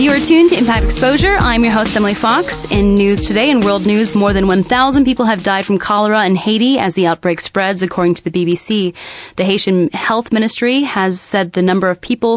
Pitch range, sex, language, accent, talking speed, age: 175-210 Hz, female, English, American, 220 wpm, 20-39